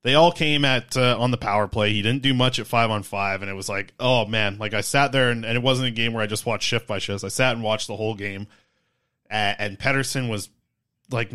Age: 20-39